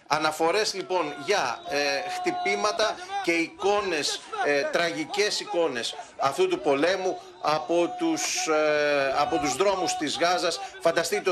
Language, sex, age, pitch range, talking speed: Greek, male, 40-59, 155-205 Hz, 95 wpm